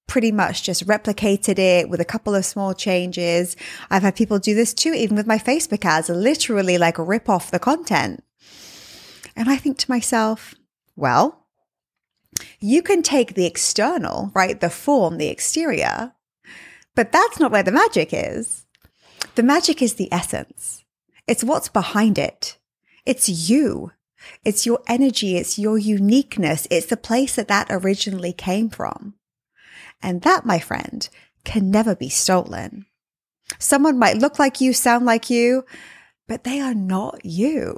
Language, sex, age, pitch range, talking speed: English, female, 20-39, 190-265 Hz, 155 wpm